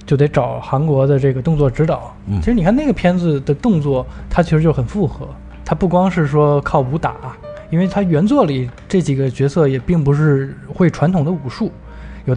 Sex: male